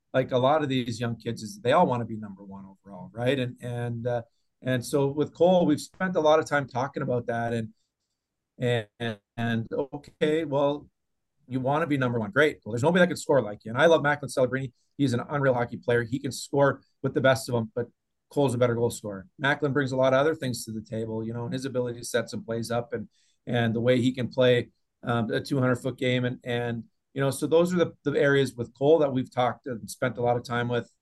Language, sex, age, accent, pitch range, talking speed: English, male, 40-59, American, 115-145 Hz, 255 wpm